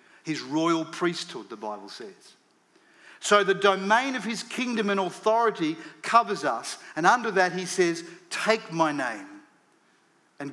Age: 50-69